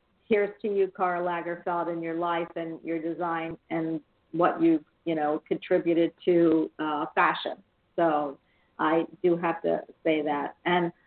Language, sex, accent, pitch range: English, female, American, 165-215 Hz